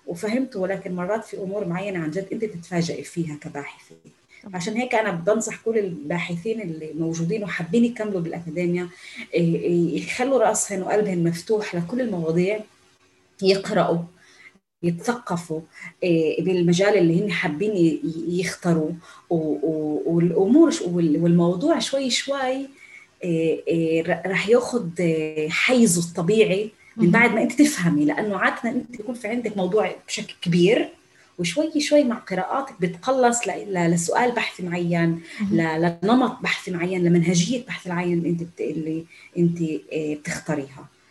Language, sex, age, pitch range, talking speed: Arabic, female, 30-49, 170-215 Hz, 110 wpm